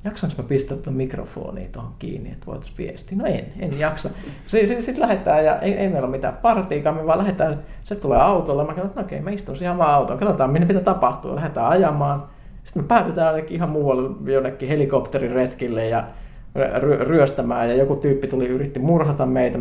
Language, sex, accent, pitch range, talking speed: Finnish, male, native, 135-180 Hz, 185 wpm